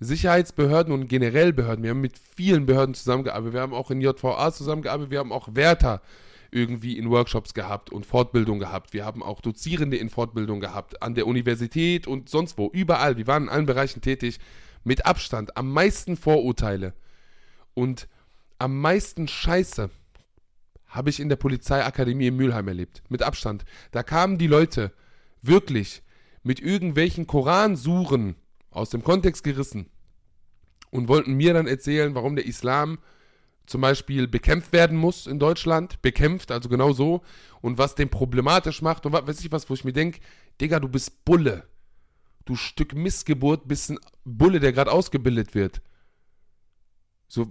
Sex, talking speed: male, 160 wpm